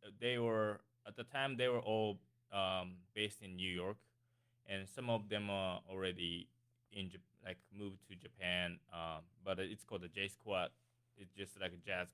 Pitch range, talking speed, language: 90-115 Hz, 190 wpm, English